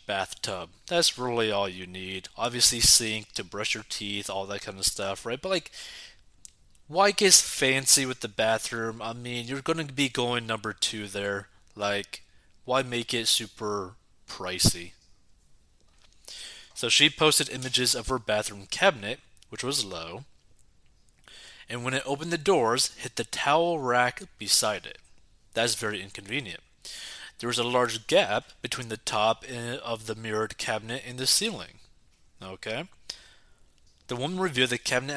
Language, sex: English, male